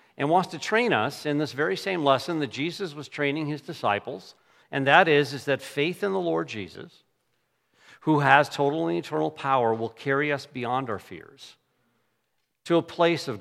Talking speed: 190 wpm